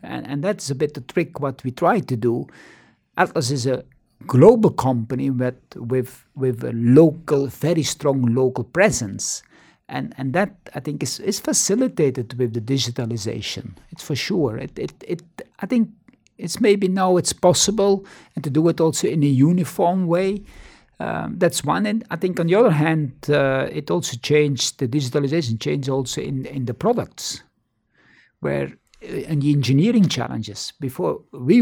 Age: 60-79